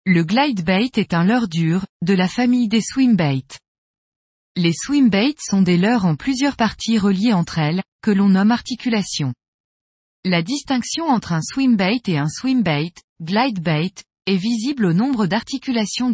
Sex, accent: female, French